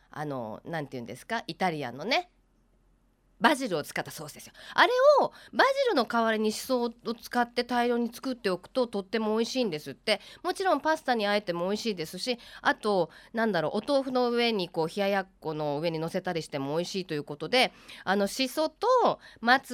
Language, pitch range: Japanese, 180-250 Hz